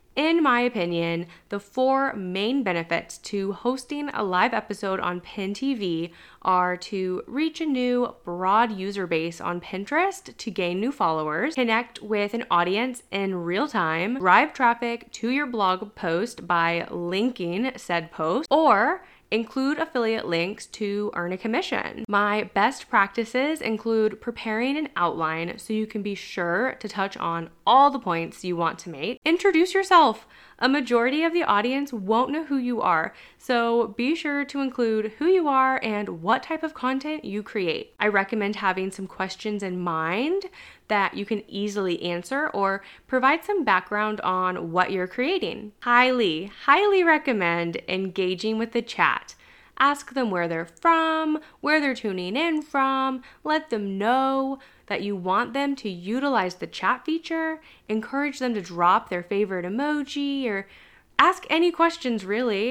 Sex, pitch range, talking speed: female, 190-275 Hz, 155 wpm